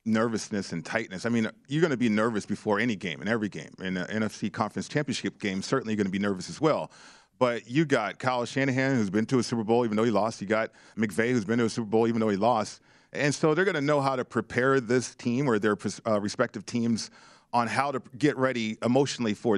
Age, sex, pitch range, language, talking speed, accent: 40-59, male, 110-135 Hz, English, 245 wpm, American